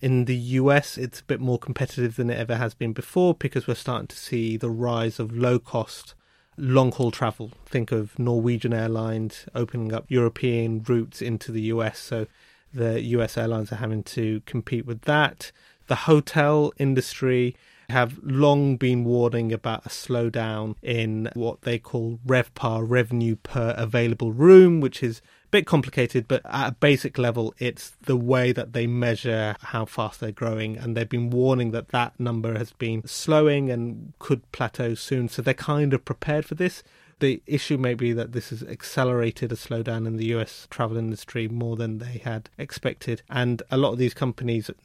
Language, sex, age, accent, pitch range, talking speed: English, male, 30-49, British, 115-130 Hz, 175 wpm